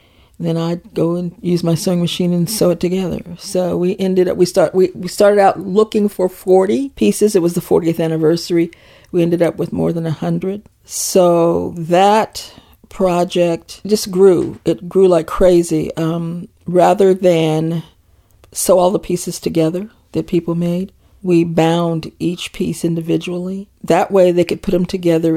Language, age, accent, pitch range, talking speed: English, 40-59, American, 165-185 Hz, 165 wpm